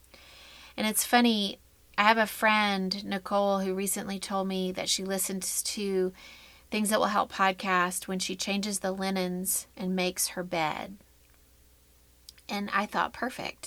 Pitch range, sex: 185-210 Hz, female